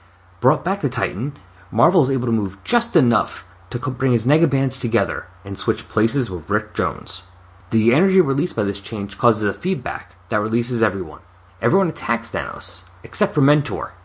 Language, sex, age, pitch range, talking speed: English, male, 30-49, 90-130 Hz, 170 wpm